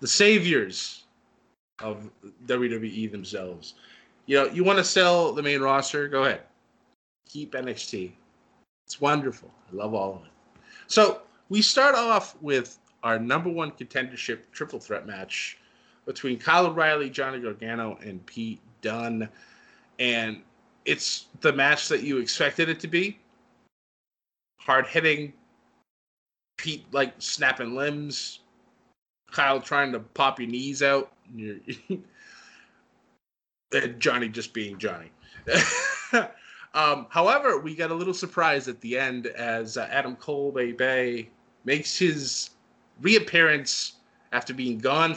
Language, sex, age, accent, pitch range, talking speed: English, male, 20-39, American, 120-160 Hz, 125 wpm